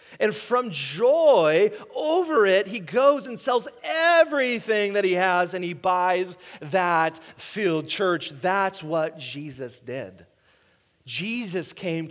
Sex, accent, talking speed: male, American, 125 wpm